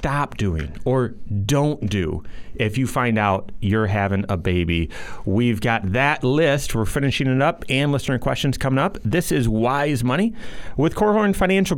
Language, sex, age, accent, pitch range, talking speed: English, male, 30-49, American, 130-175 Hz, 175 wpm